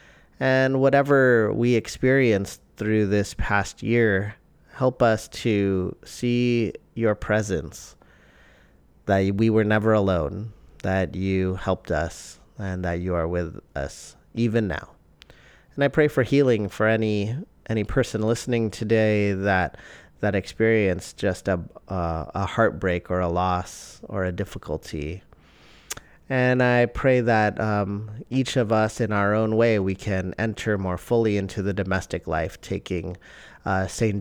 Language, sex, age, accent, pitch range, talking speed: English, male, 30-49, American, 90-110 Hz, 140 wpm